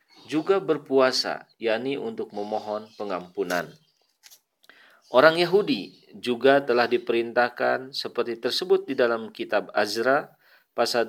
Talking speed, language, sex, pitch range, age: 95 wpm, Indonesian, male, 110-145 Hz, 40-59